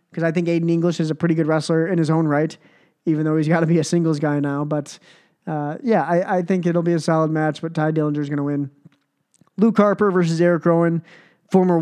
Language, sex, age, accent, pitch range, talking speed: English, male, 20-39, American, 160-185 Hz, 240 wpm